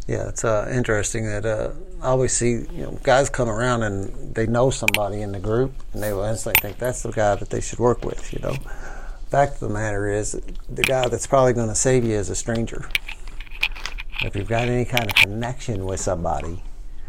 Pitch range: 100-120 Hz